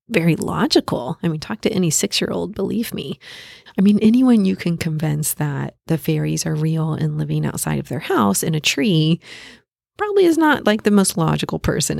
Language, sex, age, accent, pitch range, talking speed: English, female, 30-49, American, 155-195 Hz, 190 wpm